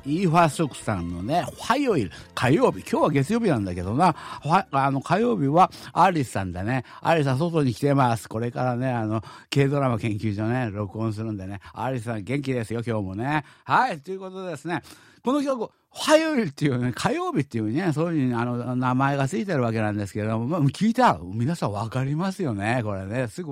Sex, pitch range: male, 115-170 Hz